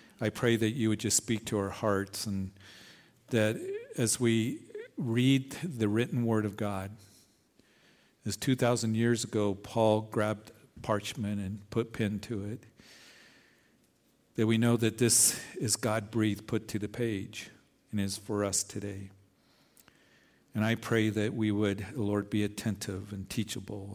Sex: male